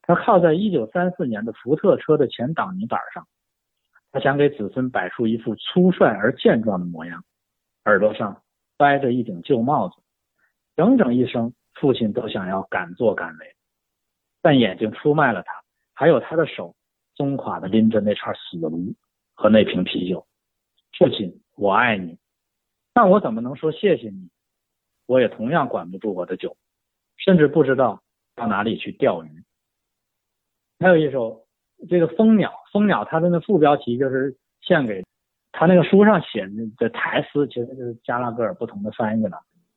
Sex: male